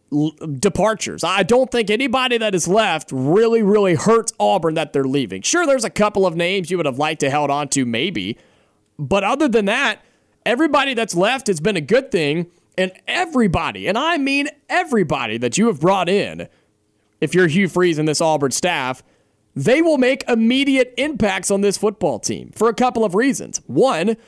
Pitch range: 160-230 Hz